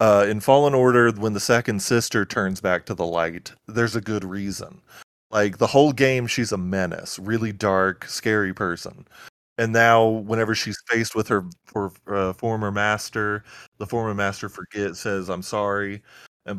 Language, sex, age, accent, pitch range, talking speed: English, male, 20-39, American, 100-115 Hz, 170 wpm